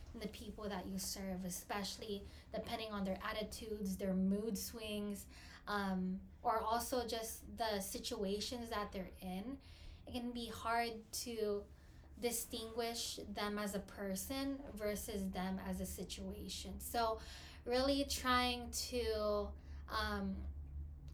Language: English